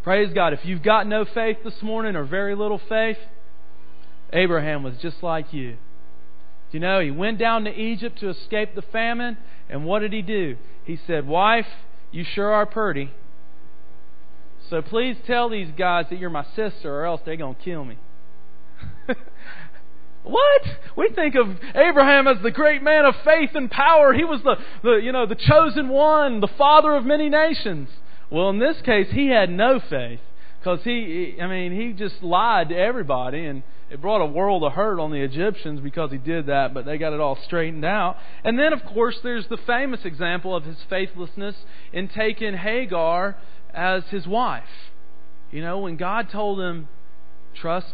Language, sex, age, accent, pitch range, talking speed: English, male, 40-59, American, 145-225 Hz, 185 wpm